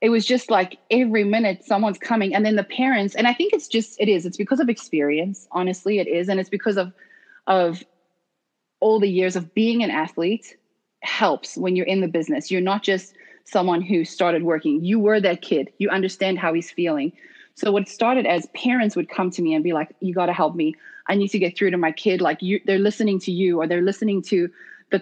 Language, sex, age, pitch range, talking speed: English, female, 30-49, 185-230 Hz, 230 wpm